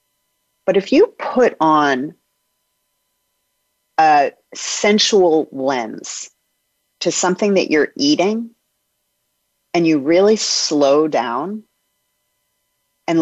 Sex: female